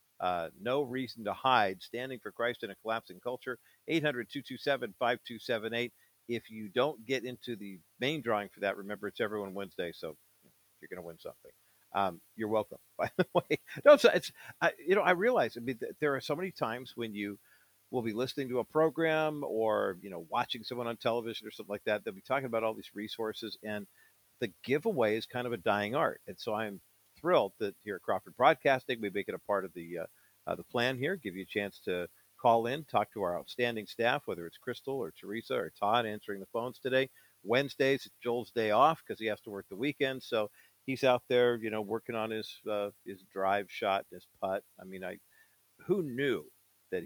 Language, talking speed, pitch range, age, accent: English, 210 wpm, 100-125 Hz, 50-69, American